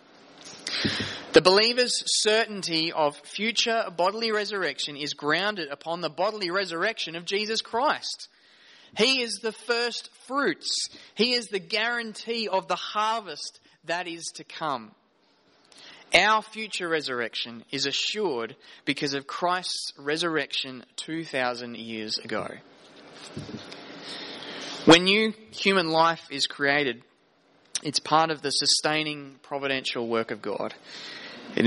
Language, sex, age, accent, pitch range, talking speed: English, male, 20-39, Australian, 140-200 Hz, 115 wpm